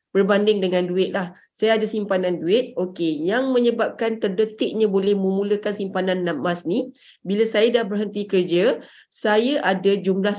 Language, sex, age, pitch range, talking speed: Malay, female, 30-49, 190-250 Hz, 145 wpm